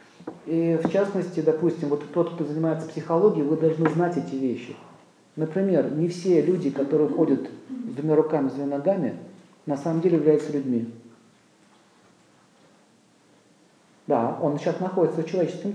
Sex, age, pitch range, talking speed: male, 40-59, 155-185 Hz, 140 wpm